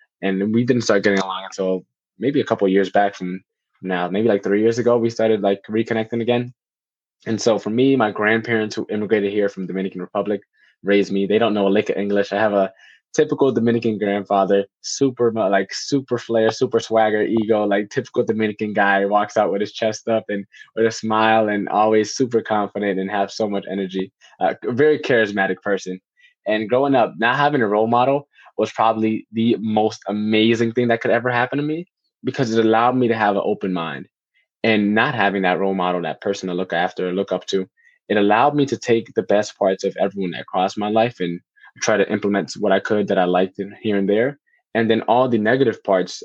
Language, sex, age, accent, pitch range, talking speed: English, male, 20-39, American, 100-115 Hz, 210 wpm